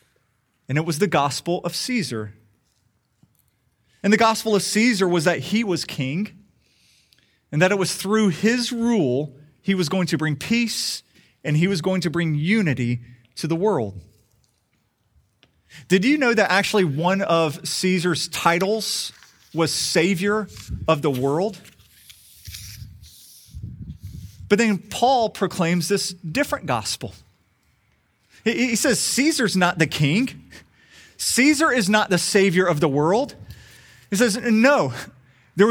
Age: 30-49